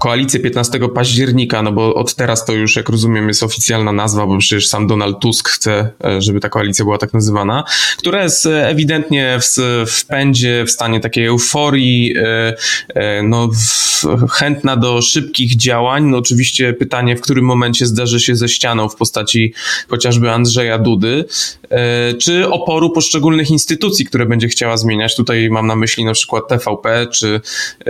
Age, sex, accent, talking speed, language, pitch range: 20-39, male, native, 150 wpm, Polish, 115-145 Hz